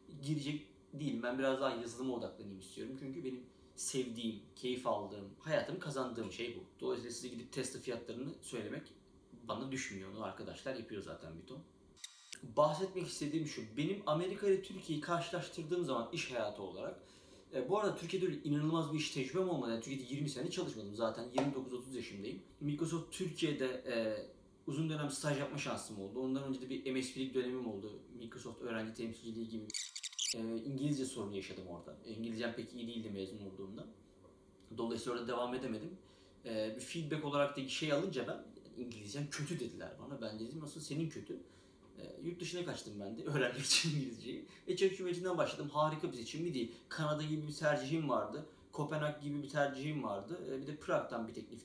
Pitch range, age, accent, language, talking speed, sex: 115-150 Hz, 40-59, native, Turkish, 170 wpm, male